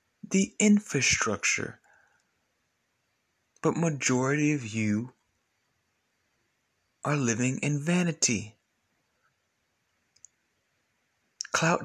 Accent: American